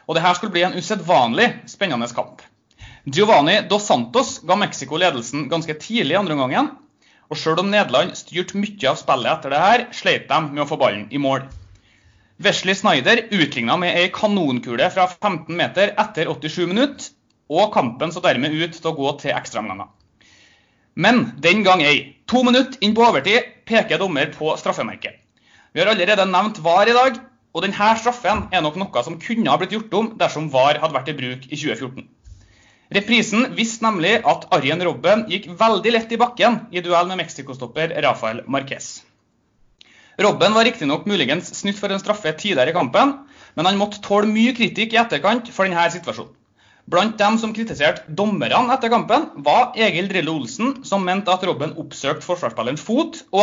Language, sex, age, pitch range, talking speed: English, male, 30-49, 155-220 Hz, 180 wpm